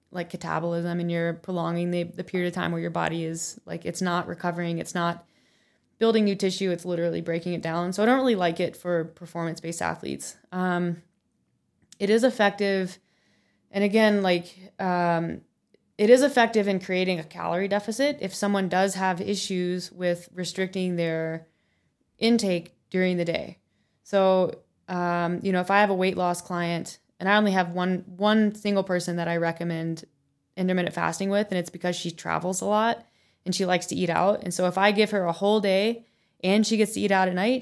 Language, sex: English, female